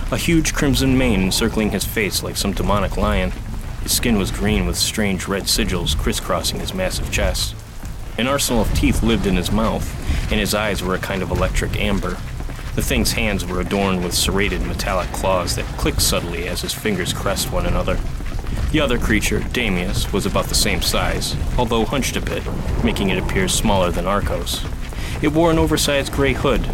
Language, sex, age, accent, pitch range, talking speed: English, male, 30-49, American, 90-110 Hz, 185 wpm